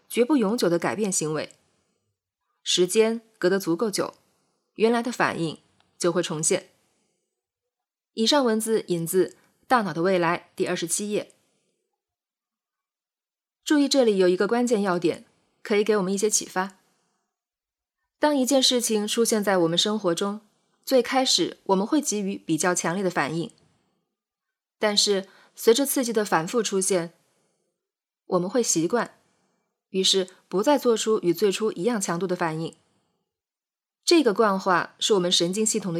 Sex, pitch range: female, 180-230 Hz